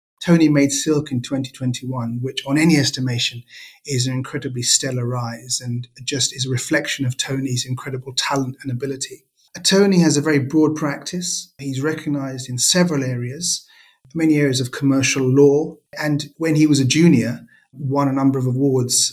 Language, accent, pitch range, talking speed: English, British, 130-145 Hz, 165 wpm